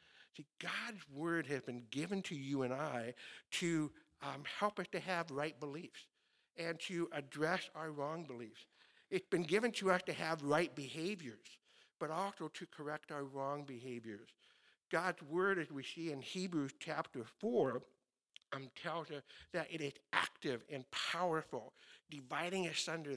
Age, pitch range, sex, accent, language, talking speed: 60-79, 130-165 Hz, male, American, Ukrainian, 160 wpm